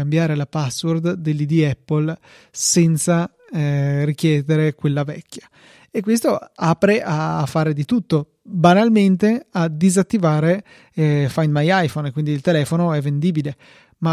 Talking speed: 125 wpm